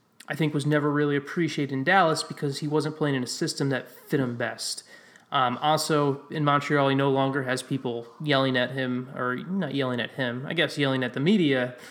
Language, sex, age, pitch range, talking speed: English, male, 20-39, 130-150 Hz, 210 wpm